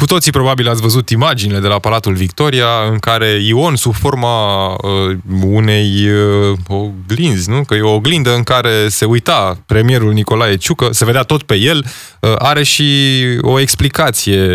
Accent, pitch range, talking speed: native, 105-135 Hz, 155 wpm